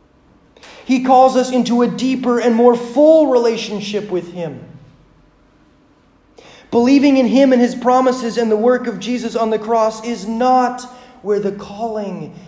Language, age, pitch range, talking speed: English, 30-49, 160-220 Hz, 150 wpm